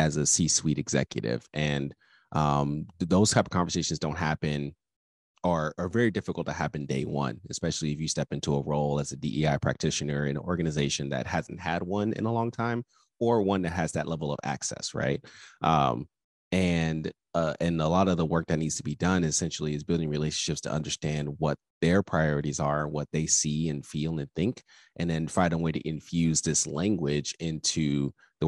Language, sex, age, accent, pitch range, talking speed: English, male, 30-49, American, 75-85 Hz, 195 wpm